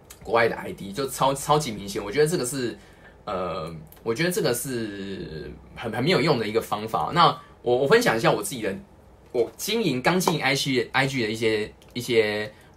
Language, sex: Chinese, male